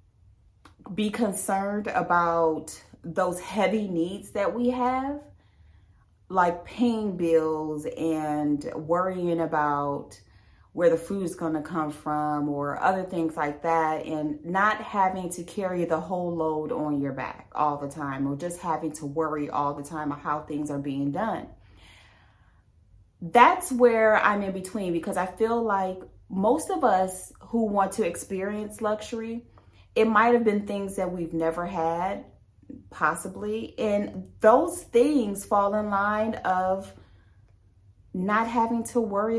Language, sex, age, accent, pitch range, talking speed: English, female, 30-49, American, 145-210 Hz, 145 wpm